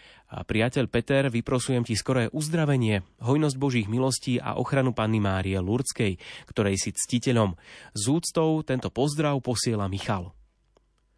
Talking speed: 130 wpm